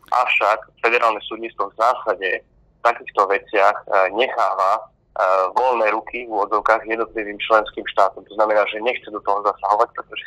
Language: Slovak